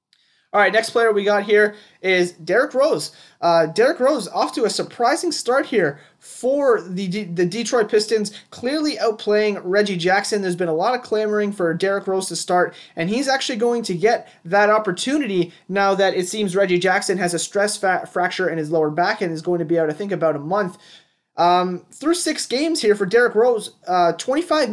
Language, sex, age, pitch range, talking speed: English, male, 20-39, 175-230 Hz, 200 wpm